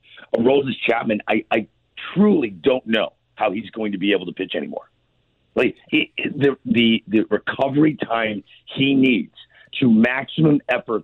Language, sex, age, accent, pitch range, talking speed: English, male, 50-69, American, 105-140 Hz, 160 wpm